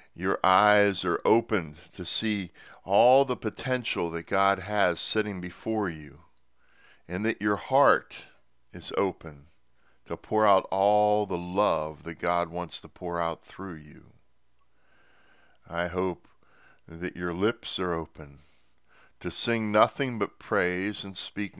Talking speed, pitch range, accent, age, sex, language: 135 wpm, 75-100 Hz, American, 50-69, male, English